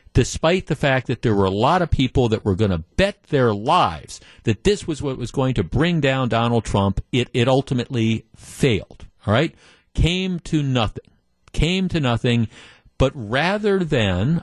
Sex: male